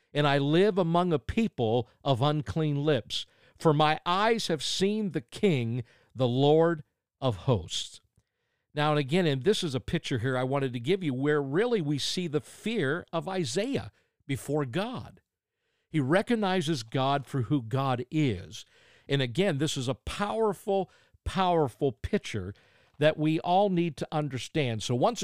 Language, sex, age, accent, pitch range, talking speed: English, male, 50-69, American, 125-190 Hz, 160 wpm